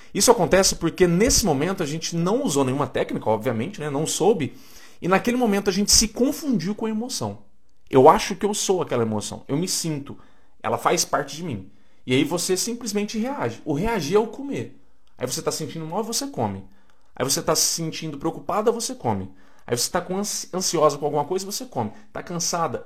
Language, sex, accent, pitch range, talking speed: Portuguese, male, Brazilian, 120-190 Hz, 200 wpm